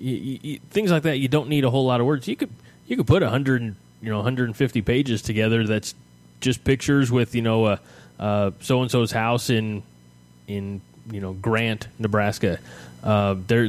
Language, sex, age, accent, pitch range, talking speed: English, male, 20-39, American, 100-115 Hz, 195 wpm